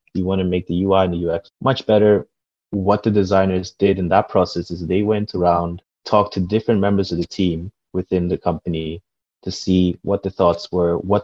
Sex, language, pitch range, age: male, English, 85-95 Hz, 20-39